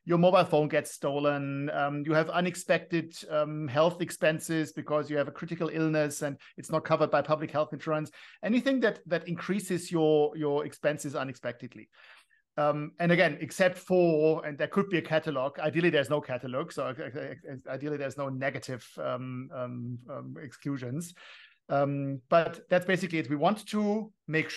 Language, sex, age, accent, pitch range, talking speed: English, male, 50-69, German, 145-175 Hz, 165 wpm